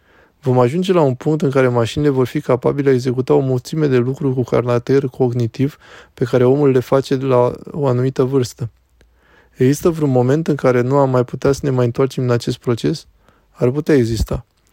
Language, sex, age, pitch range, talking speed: Romanian, male, 20-39, 120-140 Hz, 200 wpm